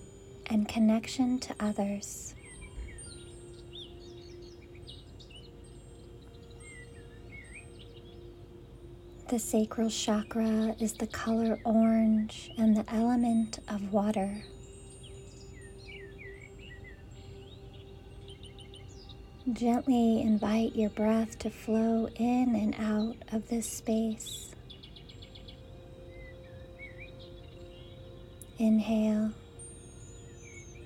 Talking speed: 55 wpm